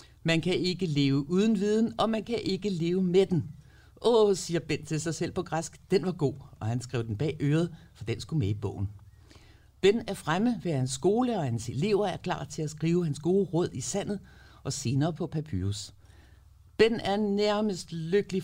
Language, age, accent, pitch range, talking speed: Danish, 60-79, native, 125-195 Hz, 205 wpm